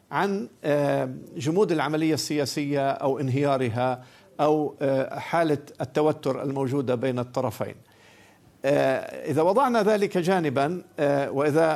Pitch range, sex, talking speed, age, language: 135-180 Hz, male, 85 wpm, 50-69, Arabic